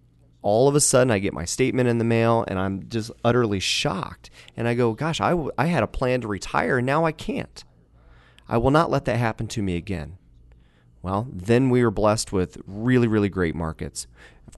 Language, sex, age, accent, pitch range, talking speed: English, male, 30-49, American, 90-115 Hz, 210 wpm